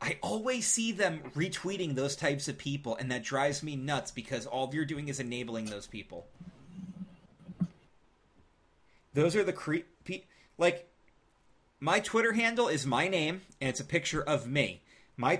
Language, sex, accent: English, male, American